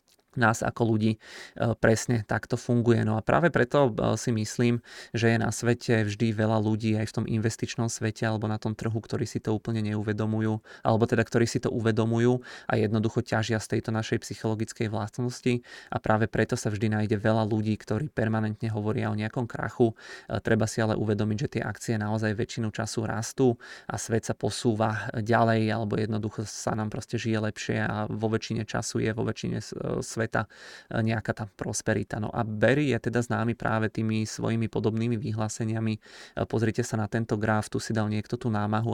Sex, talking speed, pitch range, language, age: male, 185 wpm, 110-115 Hz, Czech, 20-39